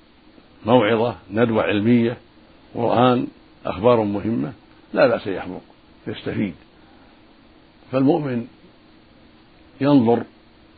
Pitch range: 105-125 Hz